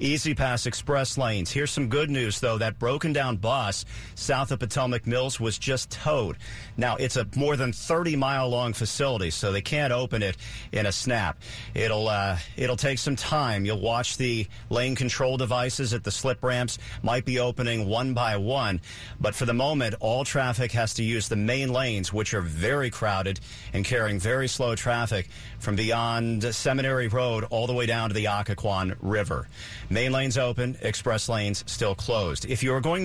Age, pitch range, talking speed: 40-59, 110-130 Hz, 185 wpm